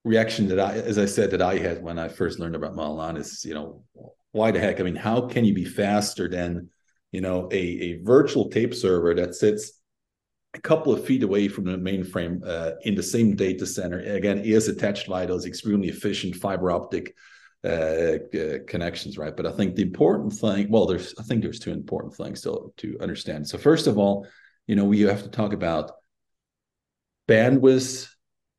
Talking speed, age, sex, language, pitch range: 195 wpm, 40-59, male, English, 90-105 Hz